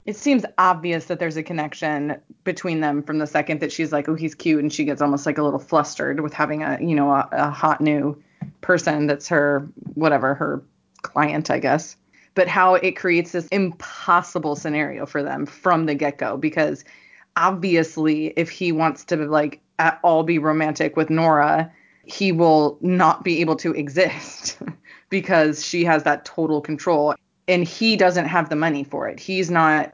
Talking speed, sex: 180 wpm, female